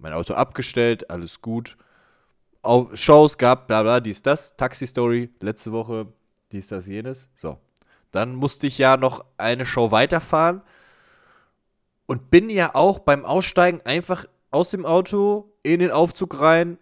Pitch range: 115-170 Hz